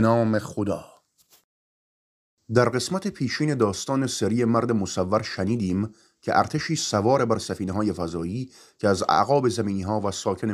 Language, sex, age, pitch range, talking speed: Persian, male, 30-49, 100-135 Hz, 130 wpm